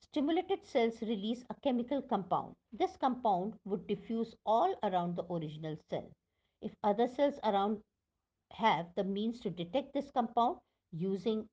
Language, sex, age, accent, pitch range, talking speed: English, female, 50-69, Indian, 180-250 Hz, 140 wpm